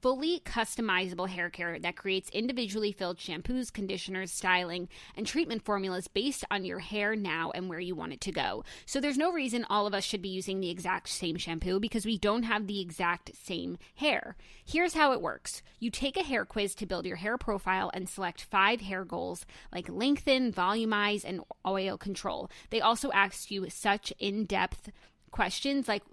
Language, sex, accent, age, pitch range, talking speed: English, female, American, 20-39, 185-220 Hz, 185 wpm